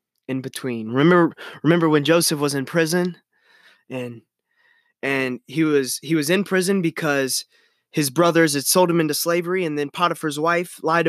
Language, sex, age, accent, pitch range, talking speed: English, male, 20-39, American, 130-165 Hz, 160 wpm